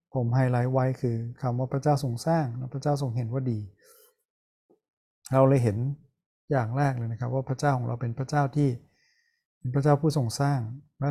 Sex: male